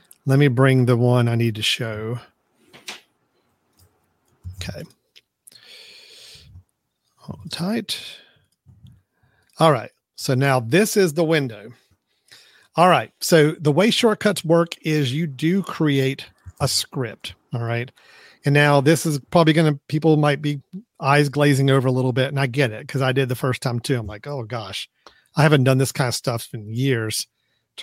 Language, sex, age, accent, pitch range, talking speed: English, male, 40-59, American, 125-155 Hz, 165 wpm